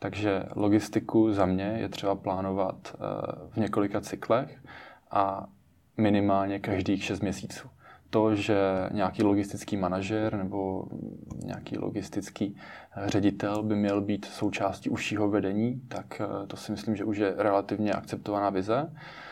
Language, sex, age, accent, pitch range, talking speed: Czech, male, 20-39, native, 95-105 Hz, 125 wpm